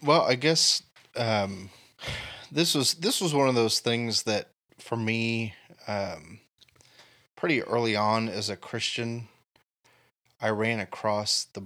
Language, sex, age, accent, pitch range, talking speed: English, male, 20-39, American, 105-120 Hz, 135 wpm